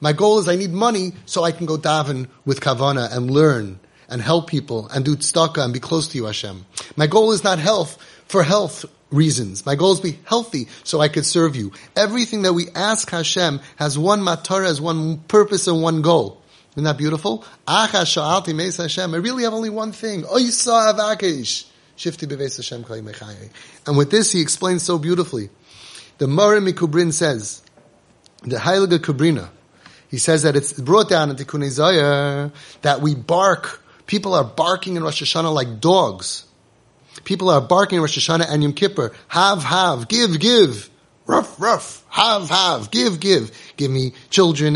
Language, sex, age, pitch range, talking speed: English, male, 30-49, 145-190 Hz, 165 wpm